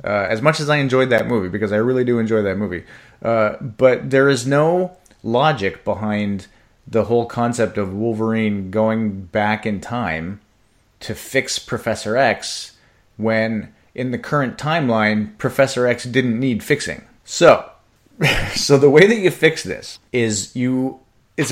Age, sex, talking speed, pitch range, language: 30-49, male, 155 wpm, 110-135 Hz, English